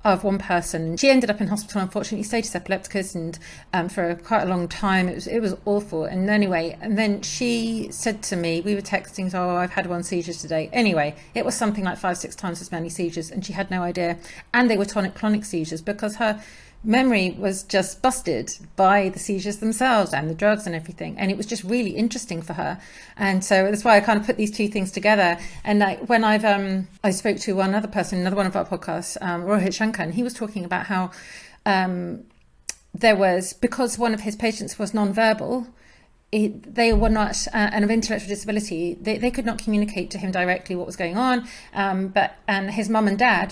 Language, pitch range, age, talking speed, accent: English, 185-220 Hz, 40-59, 220 wpm, British